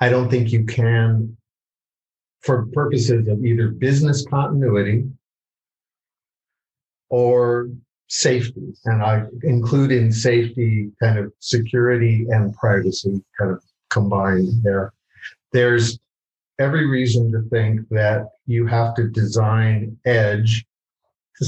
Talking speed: 110 wpm